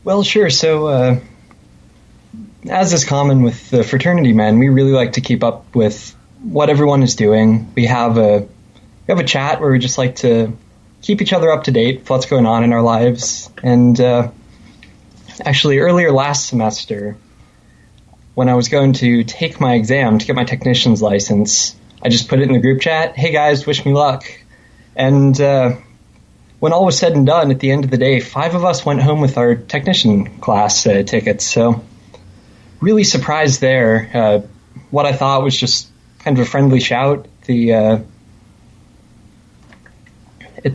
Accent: American